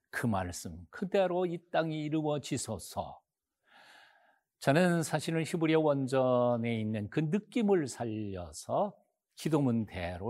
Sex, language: male, Korean